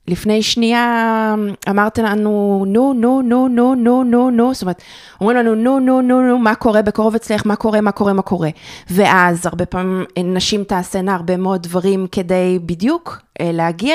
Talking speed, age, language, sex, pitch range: 170 wpm, 20-39, Hebrew, female, 160-210 Hz